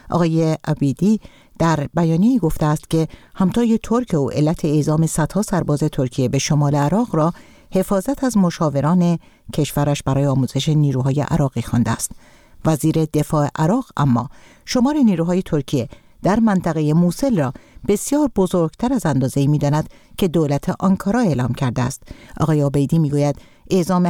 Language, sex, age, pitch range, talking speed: Persian, female, 50-69, 145-190 Hz, 140 wpm